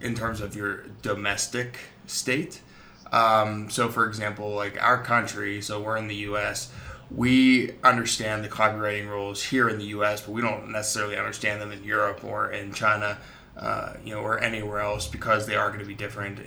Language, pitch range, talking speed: English, 105-120 Hz, 185 wpm